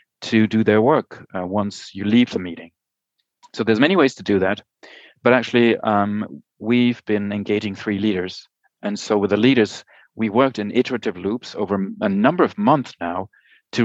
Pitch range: 100-125 Hz